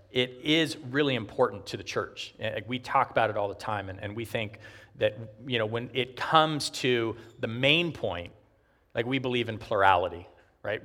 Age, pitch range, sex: 40-59, 105-135 Hz, male